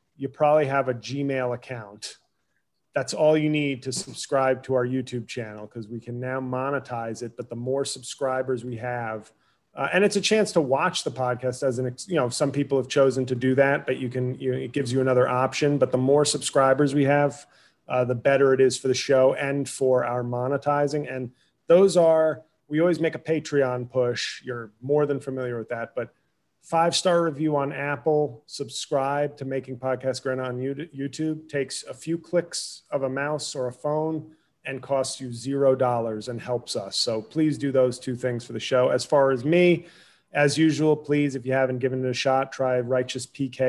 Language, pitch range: English, 125-145 Hz